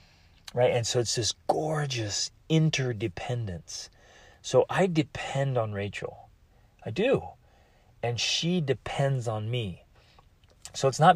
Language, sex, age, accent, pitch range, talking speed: English, male, 30-49, American, 105-140 Hz, 120 wpm